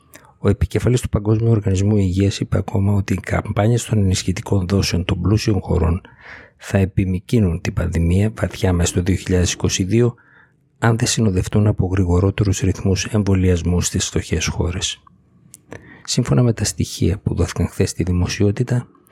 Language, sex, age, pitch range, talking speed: Greek, male, 50-69, 90-110 Hz, 140 wpm